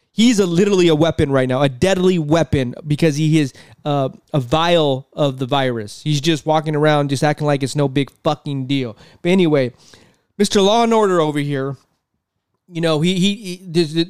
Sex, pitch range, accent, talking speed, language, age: male, 145-190 Hz, American, 185 wpm, English, 20-39